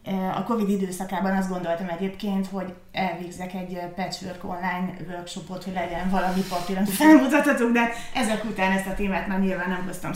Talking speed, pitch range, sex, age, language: 160 wpm, 175-200 Hz, female, 30-49, Hungarian